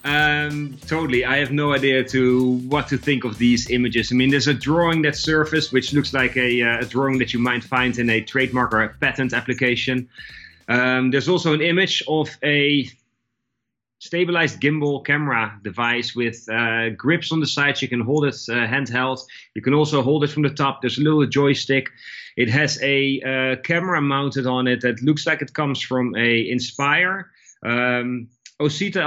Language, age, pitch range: English, 30-49, 120-145 Hz